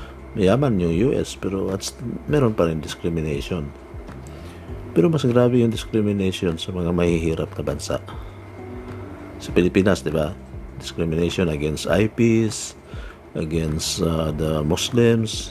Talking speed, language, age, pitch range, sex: 115 wpm, Filipino, 50-69, 85-110 Hz, male